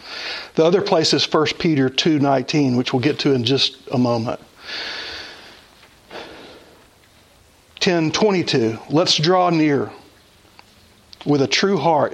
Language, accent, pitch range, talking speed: English, American, 135-190 Hz, 115 wpm